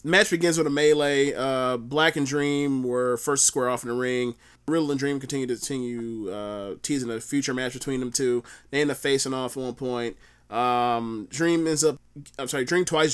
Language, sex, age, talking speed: English, male, 20-39, 215 wpm